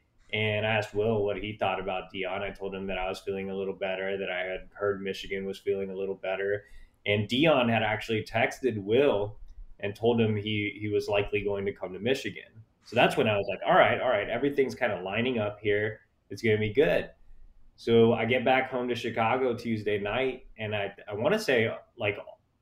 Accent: American